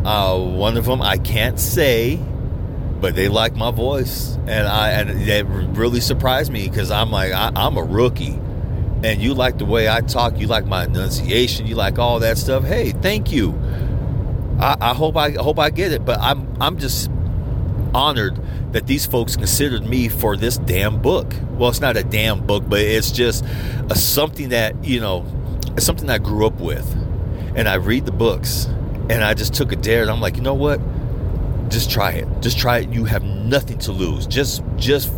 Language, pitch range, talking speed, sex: English, 105-120 Hz, 200 wpm, male